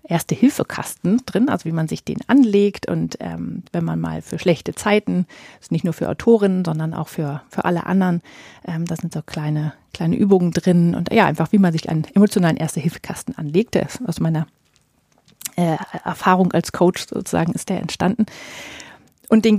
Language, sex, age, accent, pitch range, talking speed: German, female, 30-49, German, 160-200 Hz, 190 wpm